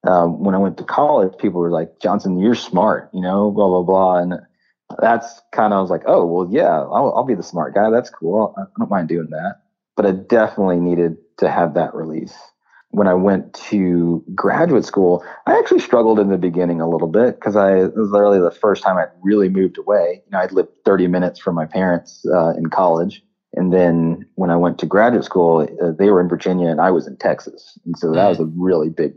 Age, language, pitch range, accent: 30-49, English, 85-100 Hz, American